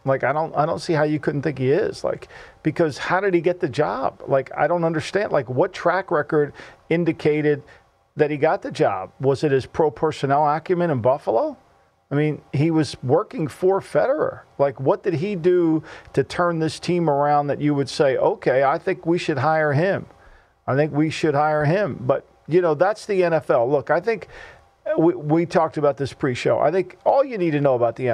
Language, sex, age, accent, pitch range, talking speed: English, male, 50-69, American, 135-170 Hz, 215 wpm